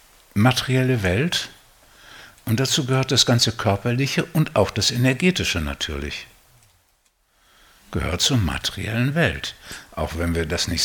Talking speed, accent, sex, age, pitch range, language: 120 wpm, German, male, 60-79, 80-115 Hz, German